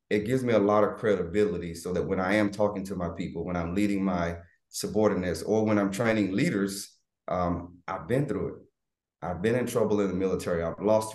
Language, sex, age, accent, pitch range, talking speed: English, male, 30-49, American, 90-105 Hz, 215 wpm